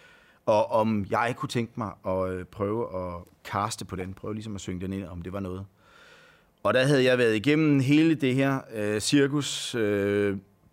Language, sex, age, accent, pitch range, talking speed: Danish, male, 30-49, native, 100-130 Hz, 195 wpm